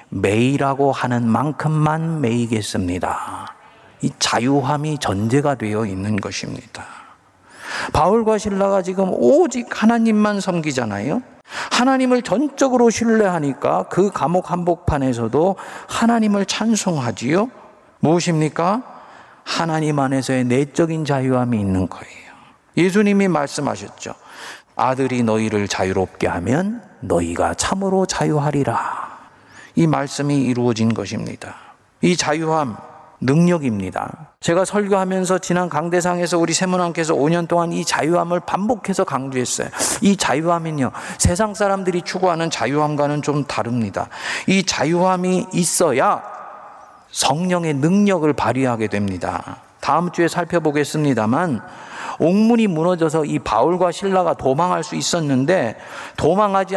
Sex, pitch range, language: male, 135-190 Hz, Korean